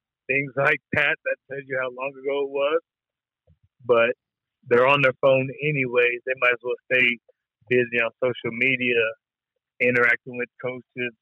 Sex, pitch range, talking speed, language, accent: male, 115-130 Hz, 155 wpm, English, American